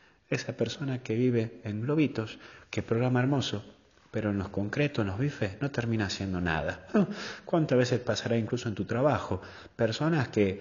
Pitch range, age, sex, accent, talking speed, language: 95-120 Hz, 30-49, male, Argentinian, 165 wpm, Spanish